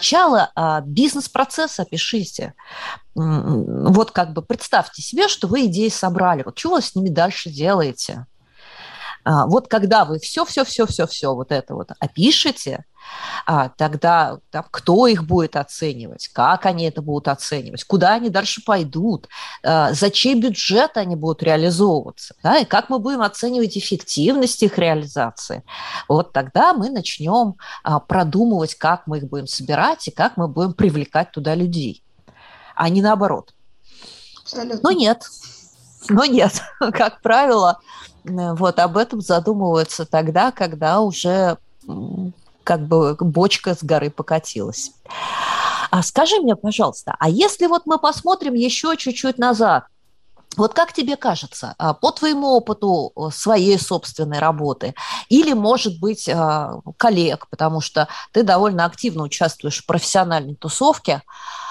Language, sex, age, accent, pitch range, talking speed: Russian, female, 30-49, native, 160-245 Hz, 125 wpm